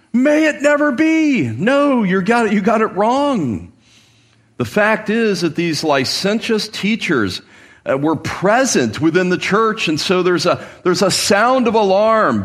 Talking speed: 160 wpm